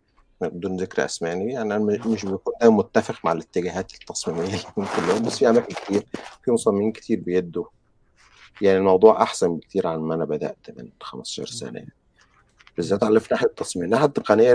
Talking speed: 165 wpm